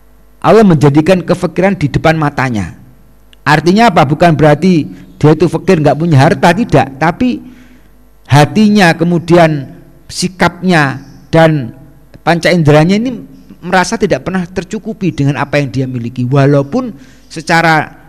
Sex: male